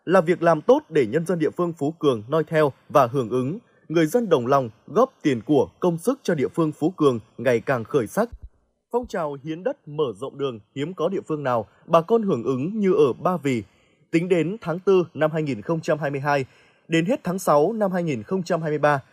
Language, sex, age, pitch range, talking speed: Vietnamese, male, 20-39, 145-190 Hz, 205 wpm